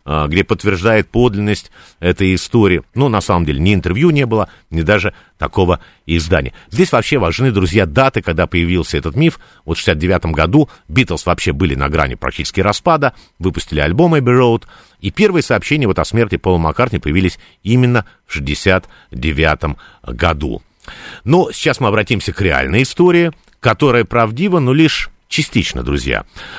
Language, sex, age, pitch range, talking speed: Russian, male, 50-69, 85-130 Hz, 150 wpm